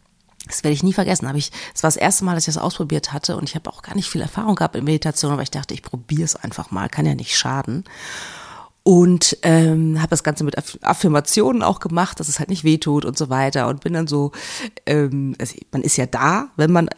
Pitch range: 145-185 Hz